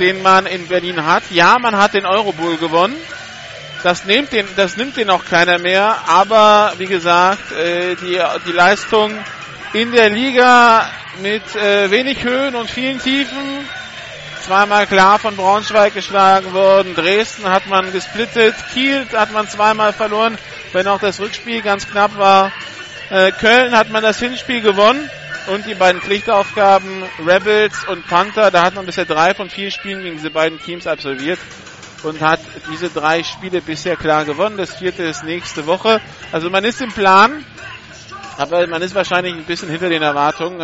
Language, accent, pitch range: German, German, 170-210 Hz